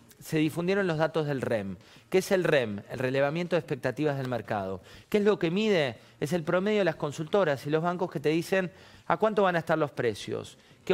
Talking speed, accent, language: 225 wpm, Argentinian, Spanish